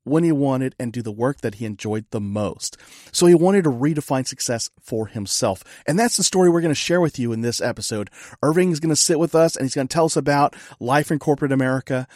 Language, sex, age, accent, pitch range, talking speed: English, male, 40-59, American, 125-170 Hz, 250 wpm